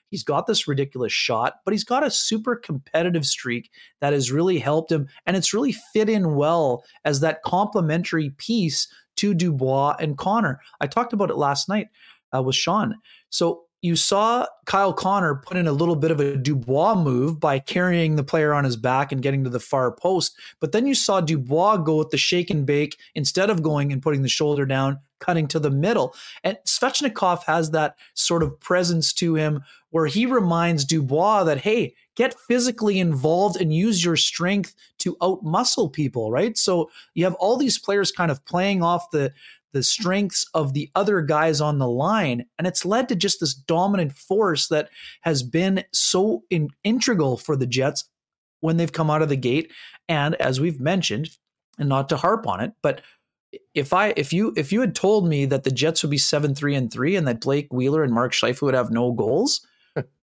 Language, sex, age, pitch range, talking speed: English, male, 30-49, 145-195 Hz, 200 wpm